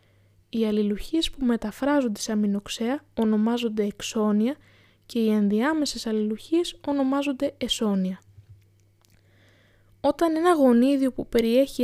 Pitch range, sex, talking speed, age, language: 210-265 Hz, female, 90 wpm, 20-39, Greek